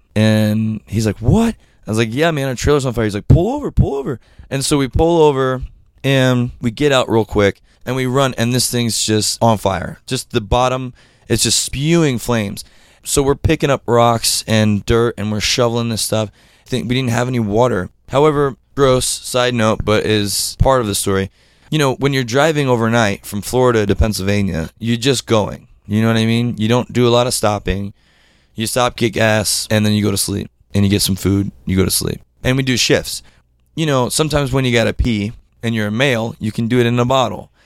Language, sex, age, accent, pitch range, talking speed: English, male, 20-39, American, 105-130 Hz, 225 wpm